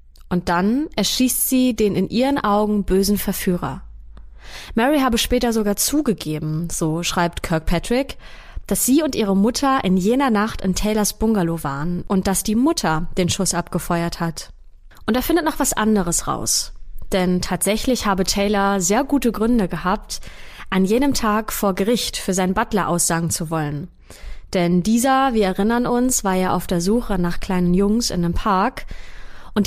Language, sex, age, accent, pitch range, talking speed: German, female, 20-39, German, 180-230 Hz, 165 wpm